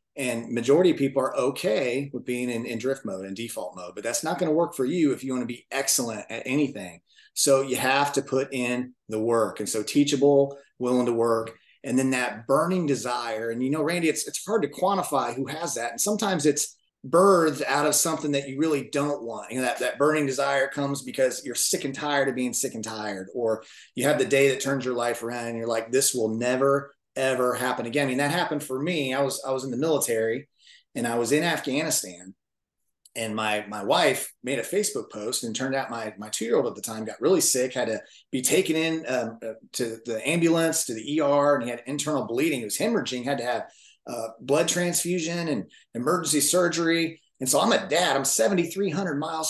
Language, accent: English, American